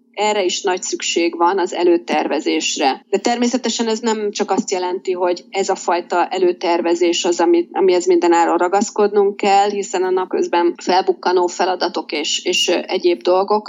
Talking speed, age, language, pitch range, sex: 145 wpm, 30-49, Hungarian, 185-240 Hz, female